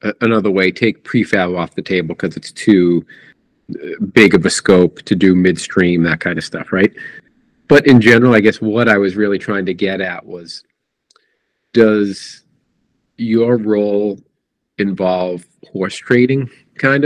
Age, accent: 40-59, American